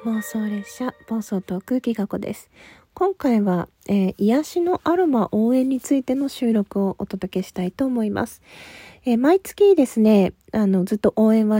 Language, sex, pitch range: Japanese, female, 200-260 Hz